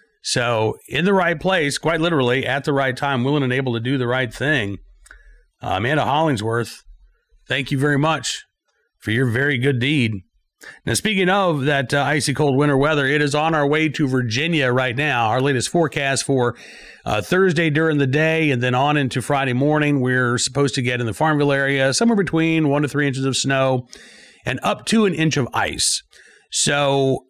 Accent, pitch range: American, 130-160 Hz